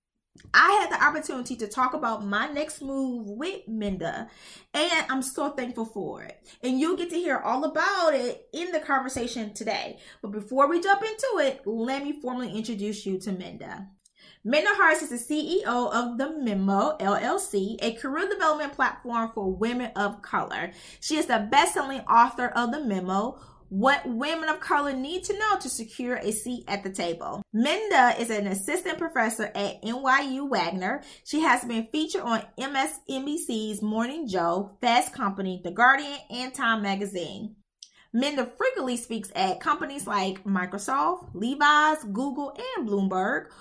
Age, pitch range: 20-39, 215-300 Hz